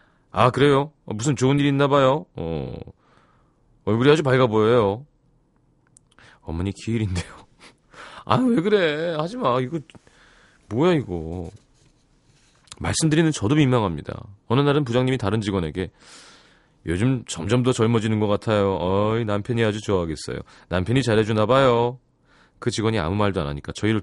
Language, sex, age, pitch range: Korean, male, 30-49, 100-145 Hz